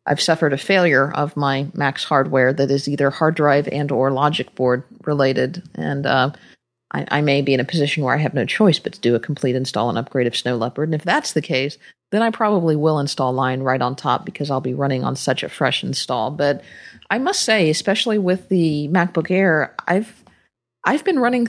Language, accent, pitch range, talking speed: English, American, 135-175 Hz, 220 wpm